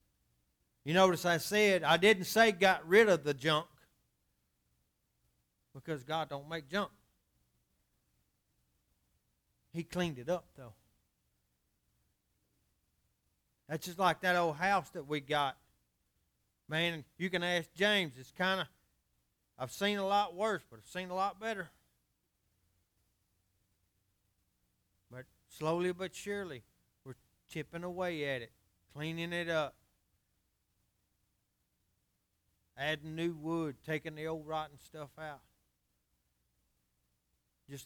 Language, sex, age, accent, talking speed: English, male, 40-59, American, 115 wpm